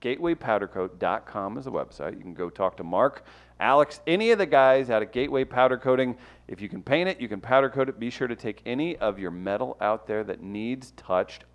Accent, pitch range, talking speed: American, 100-130 Hz, 225 wpm